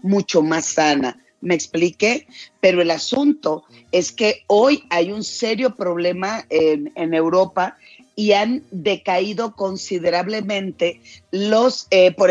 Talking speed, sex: 120 wpm, female